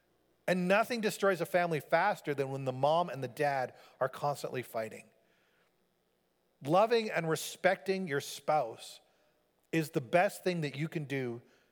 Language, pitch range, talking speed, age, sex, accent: English, 130-210 Hz, 150 wpm, 40-59, male, American